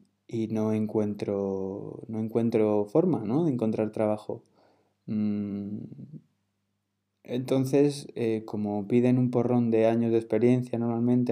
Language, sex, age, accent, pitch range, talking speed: English, male, 20-39, Spanish, 105-115 Hz, 110 wpm